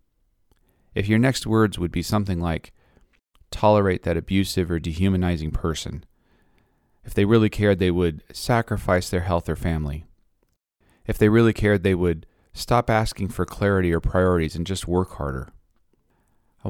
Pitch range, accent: 85-110 Hz, American